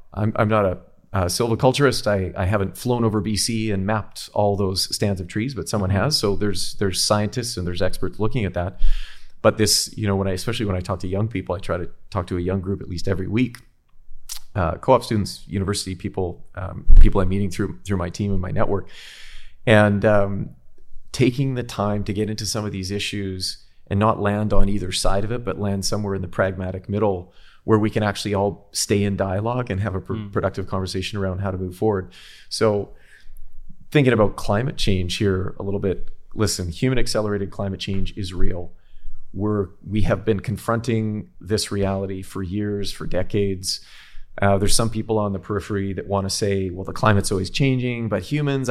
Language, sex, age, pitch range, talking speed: English, male, 30-49, 95-110 Hz, 200 wpm